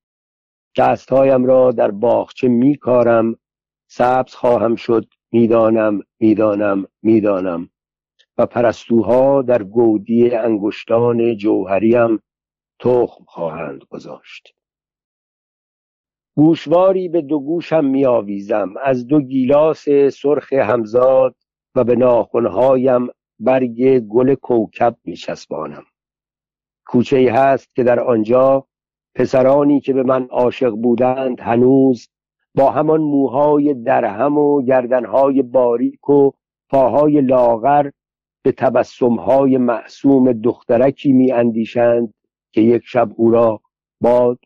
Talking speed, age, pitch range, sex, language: 95 wpm, 60-79, 115-135 Hz, male, Persian